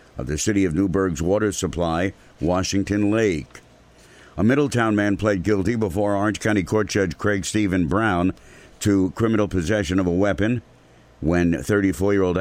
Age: 60-79